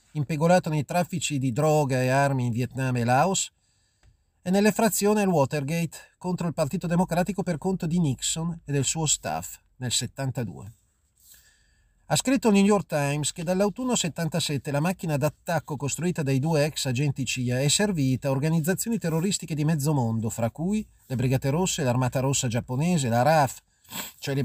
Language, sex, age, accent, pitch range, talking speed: Italian, male, 40-59, native, 125-185 Hz, 165 wpm